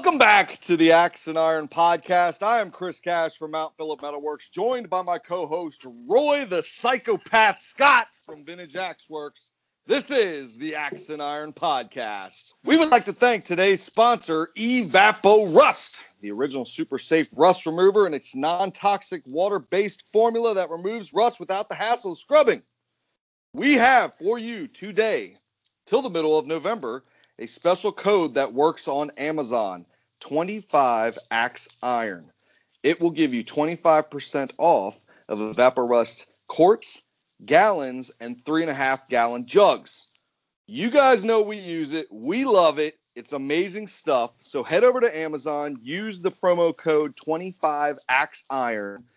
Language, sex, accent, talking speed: English, male, American, 155 wpm